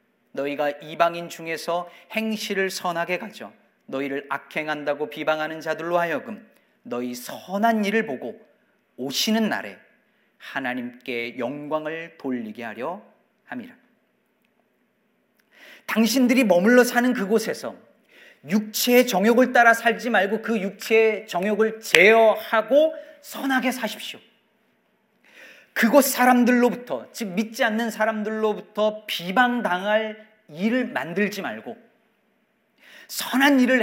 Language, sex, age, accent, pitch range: Korean, male, 40-59, native, 170-235 Hz